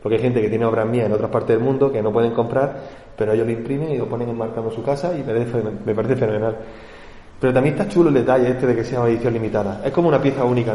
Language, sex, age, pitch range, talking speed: Spanish, male, 20-39, 120-150 Hz, 280 wpm